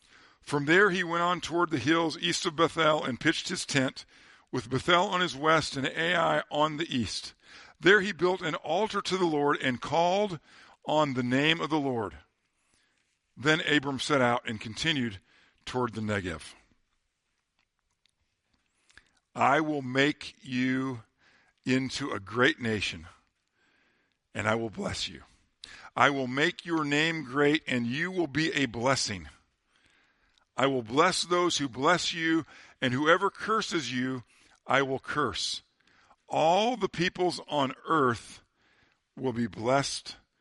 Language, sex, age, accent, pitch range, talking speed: English, male, 50-69, American, 125-165 Hz, 145 wpm